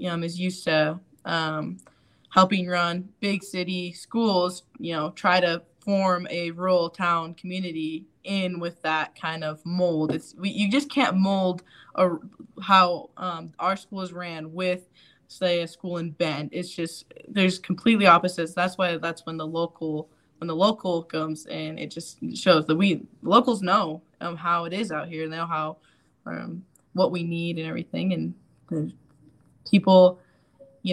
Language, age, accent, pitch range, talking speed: English, 10-29, American, 170-195 Hz, 165 wpm